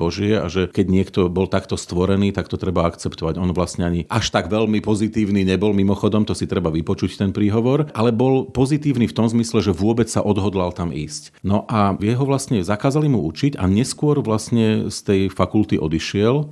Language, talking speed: Slovak, 195 wpm